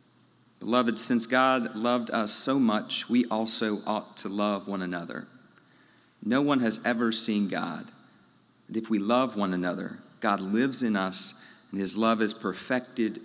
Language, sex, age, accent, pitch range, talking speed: English, male, 40-59, American, 105-125 Hz, 160 wpm